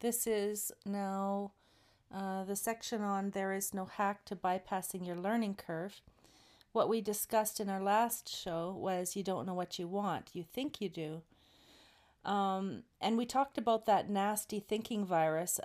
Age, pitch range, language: 40-59, 185-215 Hz, English